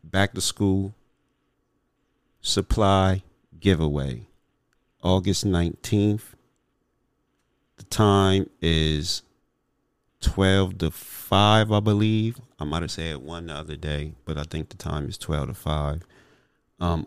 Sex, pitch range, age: male, 80-95 Hz, 40-59